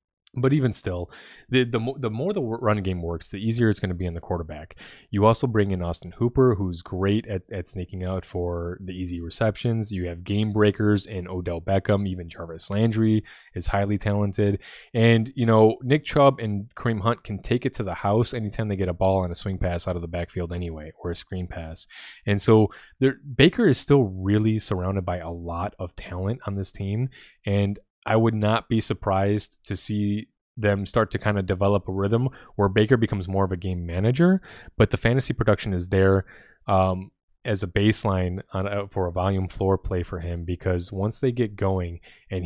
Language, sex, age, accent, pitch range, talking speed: English, male, 20-39, American, 90-110 Hz, 205 wpm